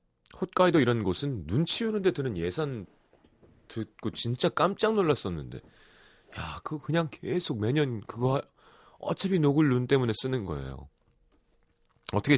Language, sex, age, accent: Korean, male, 30-49, native